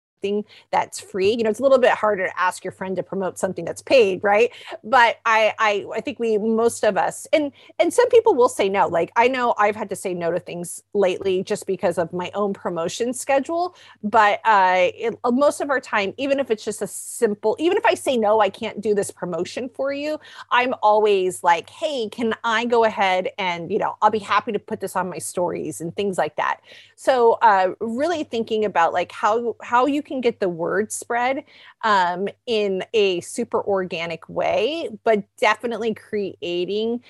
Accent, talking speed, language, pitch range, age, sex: American, 205 wpm, English, 190-245 Hz, 30-49, female